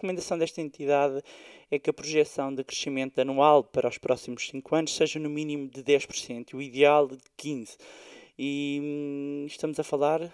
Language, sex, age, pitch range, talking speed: Portuguese, male, 20-39, 140-180 Hz, 175 wpm